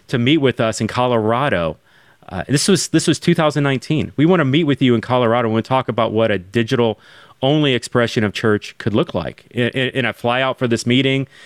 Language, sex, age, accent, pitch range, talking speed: English, male, 30-49, American, 110-130 Hz, 215 wpm